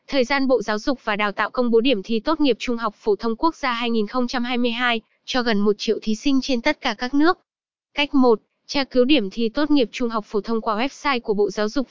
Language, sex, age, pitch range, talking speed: Vietnamese, female, 10-29, 225-270 Hz, 250 wpm